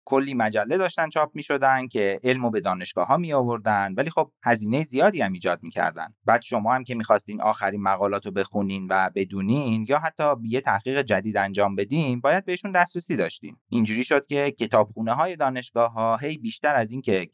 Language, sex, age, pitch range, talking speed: Persian, male, 30-49, 100-140 Hz, 185 wpm